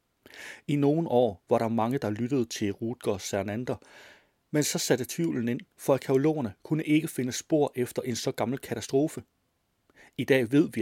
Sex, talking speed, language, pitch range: male, 175 wpm, Danish, 110-140 Hz